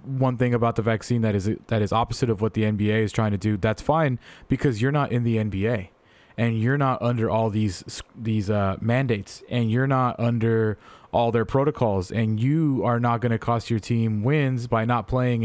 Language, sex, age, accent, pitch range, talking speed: English, male, 20-39, American, 110-135 Hz, 215 wpm